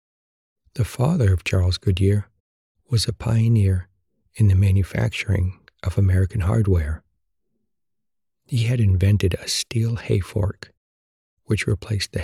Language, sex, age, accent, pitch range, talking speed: English, male, 60-79, American, 90-110 Hz, 115 wpm